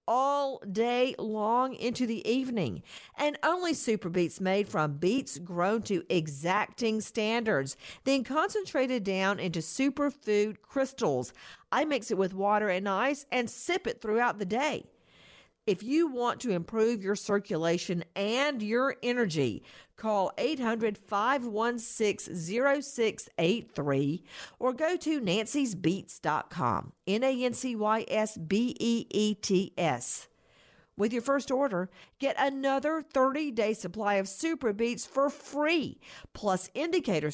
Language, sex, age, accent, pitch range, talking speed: English, female, 50-69, American, 200-275 Hz, 110 wpm